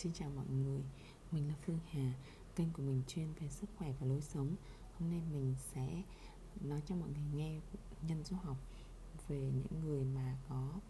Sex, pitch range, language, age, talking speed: female, 140-175 Hz, Vietnamese, 20-39, 195 wpm